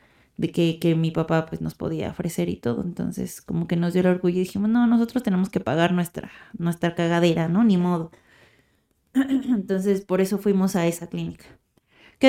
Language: Spanish